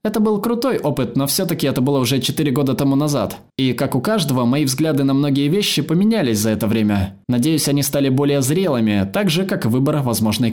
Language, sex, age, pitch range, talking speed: Russian, male, 20-39, 115-150 Hz, 205 wpm